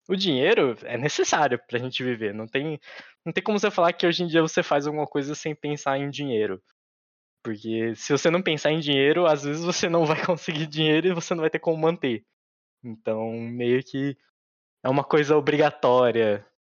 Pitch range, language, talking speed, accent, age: 110-155 Hz, Portuguese, 195 wpm, Brazilian, 20-39